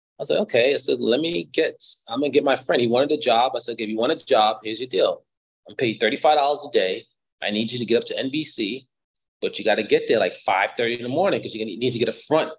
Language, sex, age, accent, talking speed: English, male, 30-49, American, 280 wpm